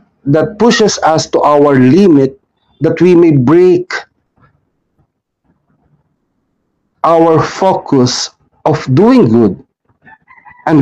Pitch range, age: 140-210 Hz, 60-79